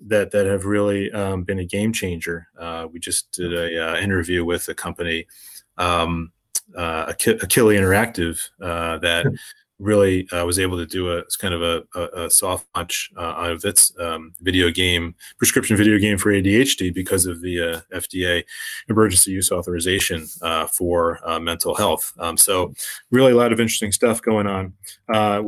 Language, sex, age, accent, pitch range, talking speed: English, male, 30-49, American, 95-110 Hz, 175 wpm